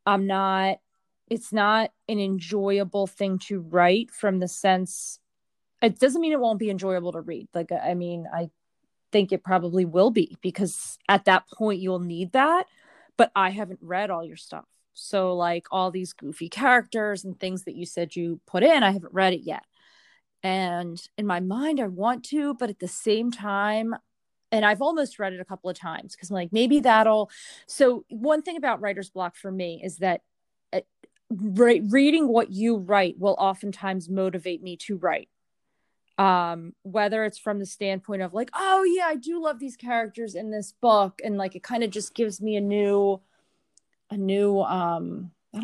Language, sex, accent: English, female, American